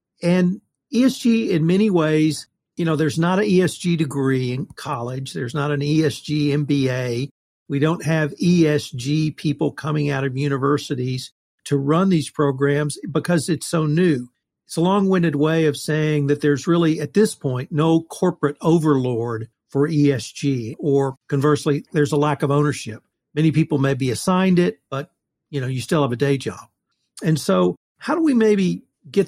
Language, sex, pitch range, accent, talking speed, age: English, male, 145-180 Hz, American, 170 wpm, 50-69